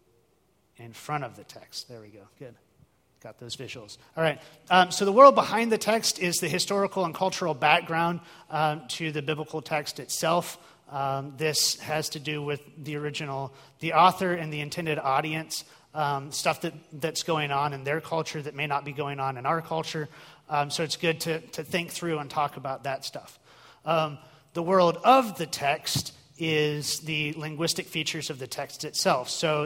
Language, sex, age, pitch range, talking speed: English, male, 30-49, 140-160 Hz, 185 wpm